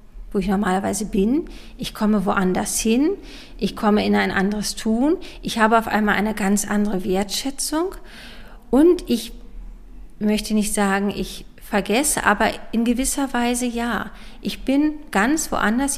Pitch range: 210-250 Hz